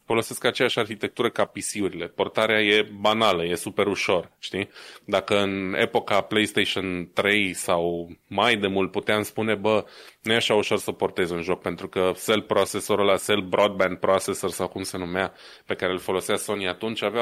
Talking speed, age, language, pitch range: 180 wpm, 20-39, Romanian, 95-115 Hz